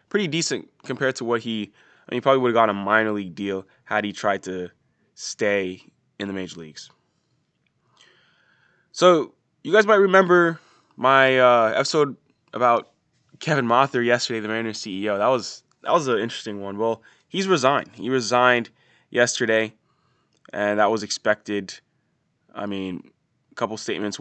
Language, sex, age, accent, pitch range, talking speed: English, male, 20-39, American, 100-120 Hz, 155 wpm